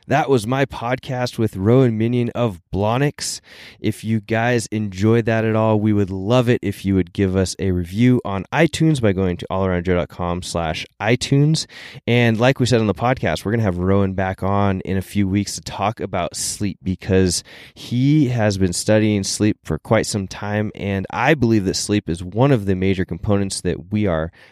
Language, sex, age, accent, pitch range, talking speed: English, male, 20-39, American, 95-120 Hz, 200 wpm